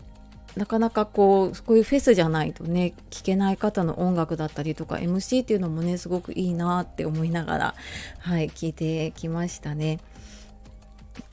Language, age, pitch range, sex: Japanese, 30-49, 165-215 Hz, female